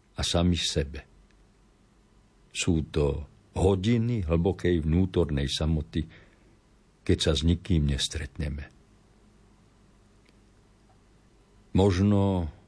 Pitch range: 80-105 Hz